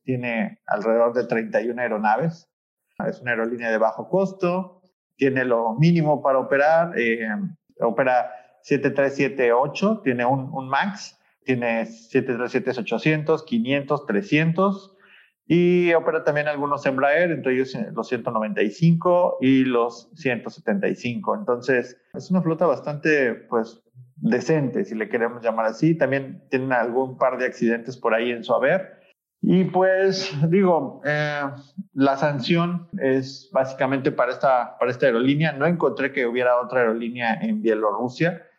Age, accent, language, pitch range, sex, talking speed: 30-49, Mexican, Spanish, 120-160 Hz, male, 130 wpm